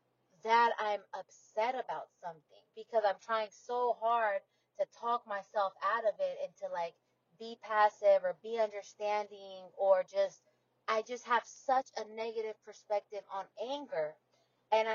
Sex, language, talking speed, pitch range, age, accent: female, English, 145 wpm, 205-255 Hz, 20-39, American